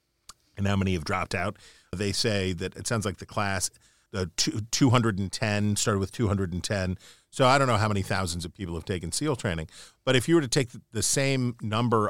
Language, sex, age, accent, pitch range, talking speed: English, male, 40-59, American, 95-120 Hz, 205 wpm